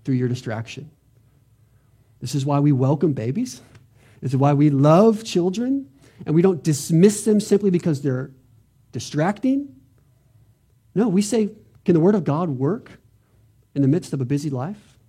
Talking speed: 160 wpm